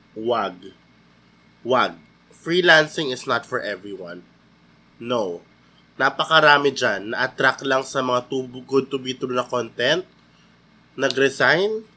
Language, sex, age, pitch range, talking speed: Filipino, male, 20-39, 125-175 Hz, 110 wpm